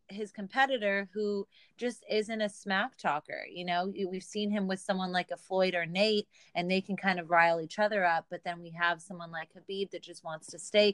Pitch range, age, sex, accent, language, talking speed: 185-215 Hz, 30-49, female, American, English, 225 wpm